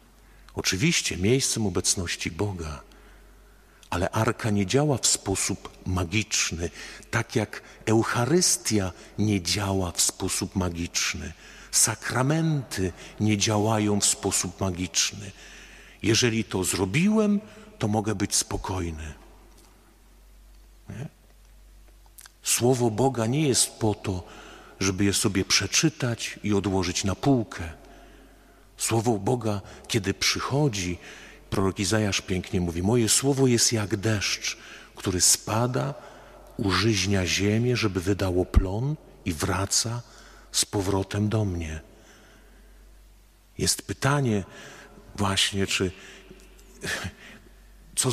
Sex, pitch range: male, 95-120 Hz